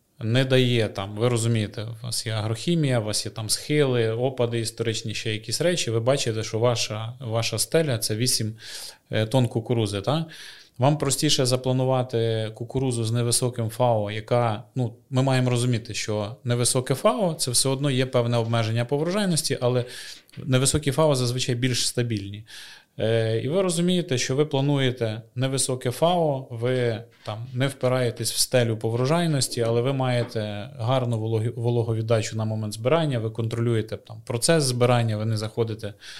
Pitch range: 110-130 Hz